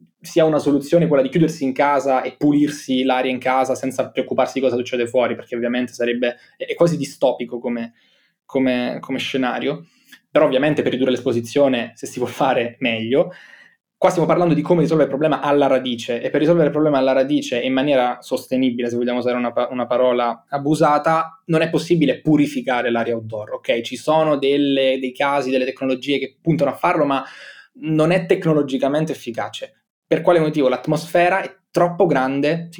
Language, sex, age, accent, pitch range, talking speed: Italian, male, 20-39, native, 125-160 Hz, 175 wpm